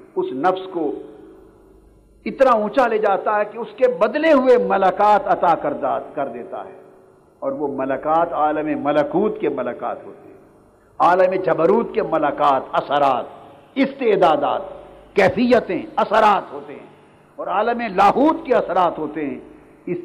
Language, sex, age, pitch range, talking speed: Urdu, male, 50-69, 190-285 Hz, 140 wpm